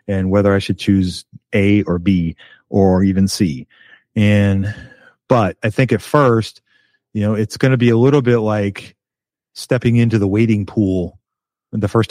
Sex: male